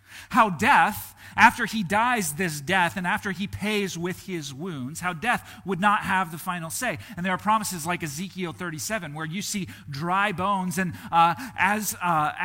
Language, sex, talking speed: English, male, 175 wpm